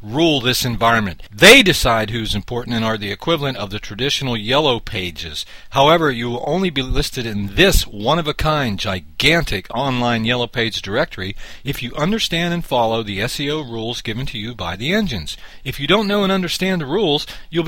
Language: English